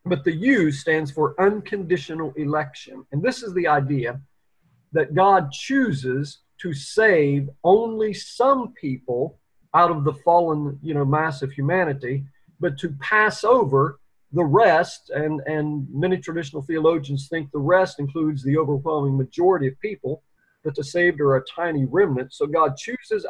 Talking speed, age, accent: 150 wpm, 40-59, American